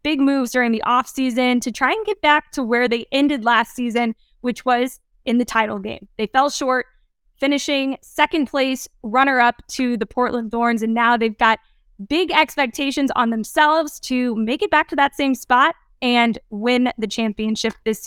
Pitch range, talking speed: 225-280 Hz, 180 wpm